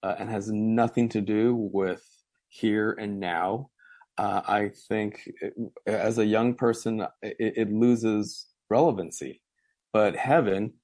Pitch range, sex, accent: 100-115 Hz, male, American